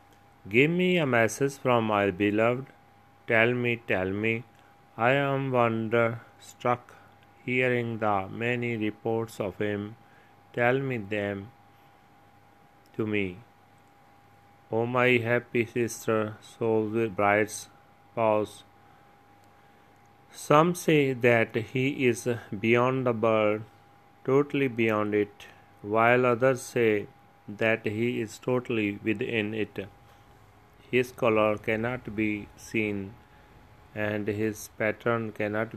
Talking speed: 105 wpm